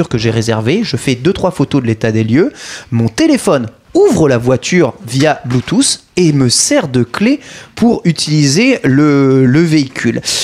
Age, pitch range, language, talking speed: 30-49, 120-175 Hz, French, 160 wpm